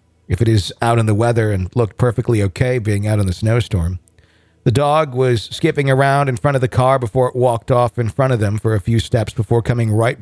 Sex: male